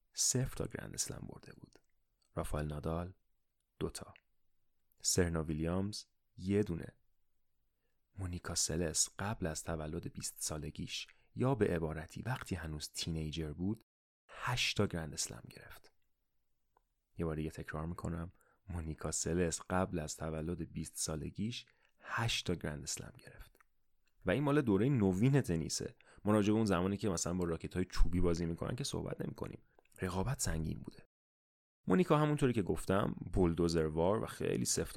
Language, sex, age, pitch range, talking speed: Persian, male, 30-49, 80-110 Hz, 130 wpm